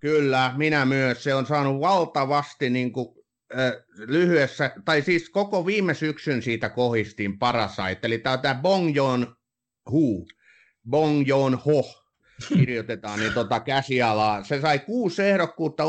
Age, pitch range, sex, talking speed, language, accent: 30-49, 115-145 Hz, male, 115 wpm, Finnish, native